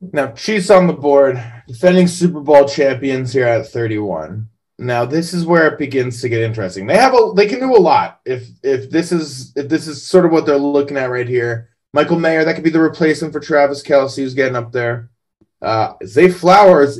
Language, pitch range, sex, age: English, 115-155 Hz, male, 20-39